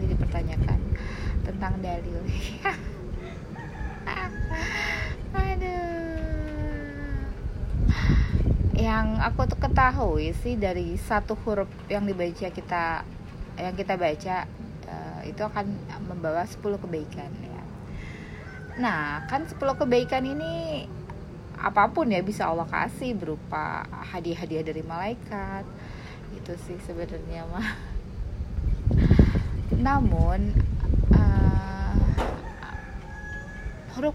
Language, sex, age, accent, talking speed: Indonesian, female, 20-39, native, 80 wpm